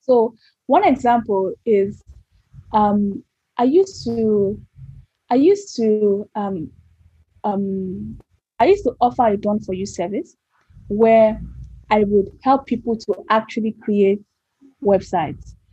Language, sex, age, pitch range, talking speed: English, female, 10-29, 205-250 Hz, 110 wpm